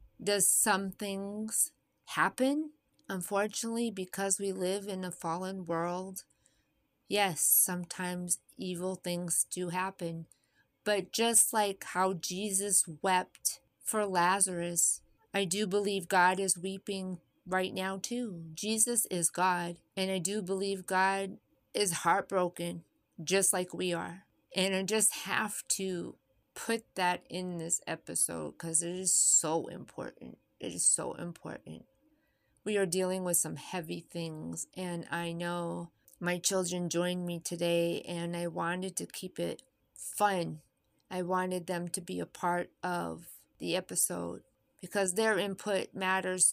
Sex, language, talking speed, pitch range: female, English, 135 wpm, 175-205 Hz